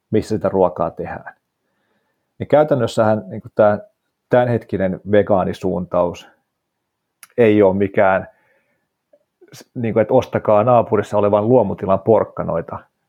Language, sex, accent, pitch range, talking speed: Finnish, male, native, 95-110 Hz, 95 wpm